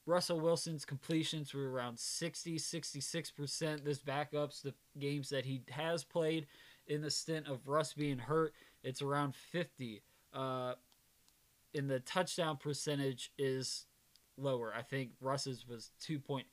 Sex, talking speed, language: male, 140 wpm, English